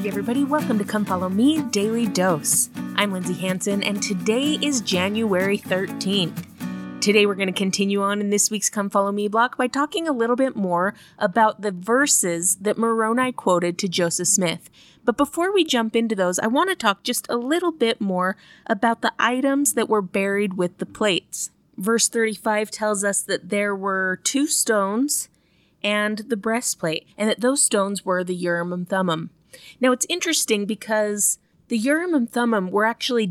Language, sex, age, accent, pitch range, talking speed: English, female, 20-39, American, 185-230 Hz, 180 wpm